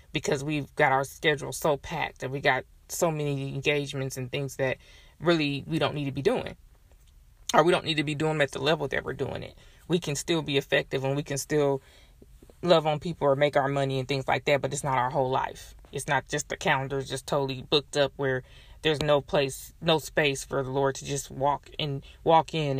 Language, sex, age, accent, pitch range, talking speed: English, female, 20-39, American, 135-155 Hz, 230 wpm